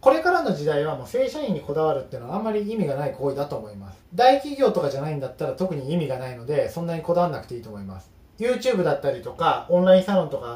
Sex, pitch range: male, 140-225 Hz